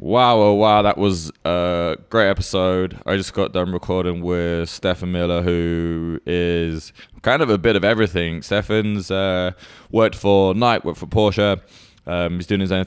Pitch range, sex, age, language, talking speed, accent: 80-90 Hz, male, 20-39, English, 175 wpm, British